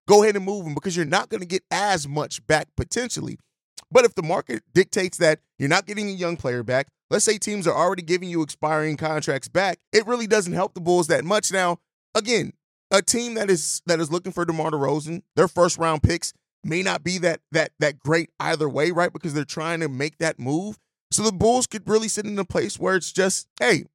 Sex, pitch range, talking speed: male, 150-190 Hz, 230 wpm